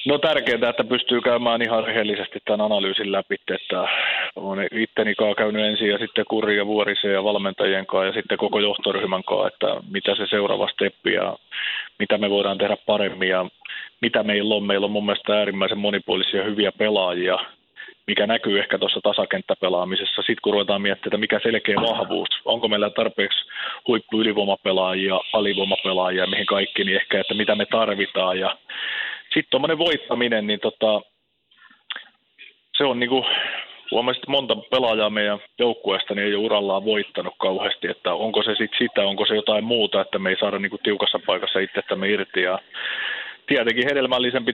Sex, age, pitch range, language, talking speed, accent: male, 30-49, 100-115 Hz, Finnish, 160 wpm, native